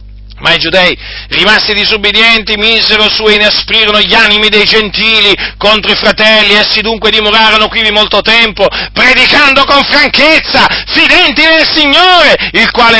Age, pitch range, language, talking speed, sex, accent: 40-59, 175-250 Hz, Italian, 145 wpm, male, native